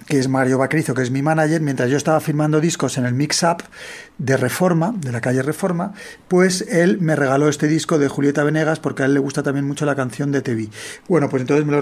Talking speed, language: 240 wpm, Spanish